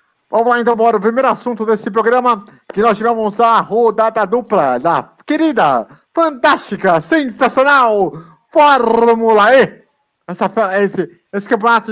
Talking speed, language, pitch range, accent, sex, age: 125 wpm, Portuguese, 175-240 Hz, Brazilian, male, 50-69